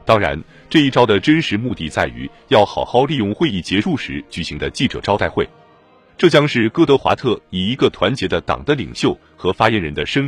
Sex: male